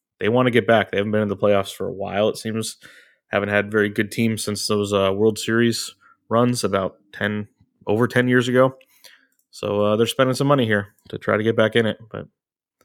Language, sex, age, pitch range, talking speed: English, male, 20-39, 105-125 Hz, 225 wpm